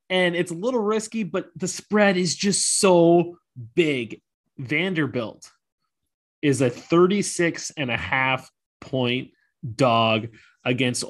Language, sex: English, male